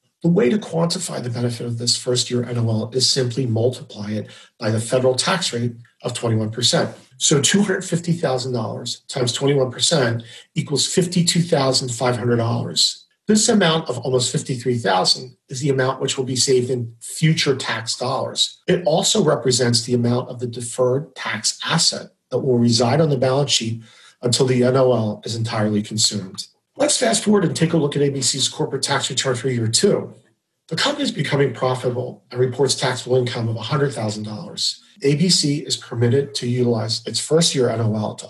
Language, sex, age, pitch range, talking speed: English, male, 40-59, 120-145 Hz, 165 wpm